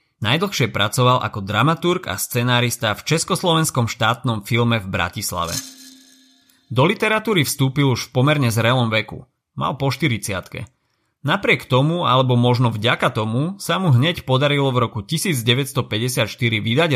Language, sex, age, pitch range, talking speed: Slovak, male, 30-49, 110-135 Hz, 130 wpm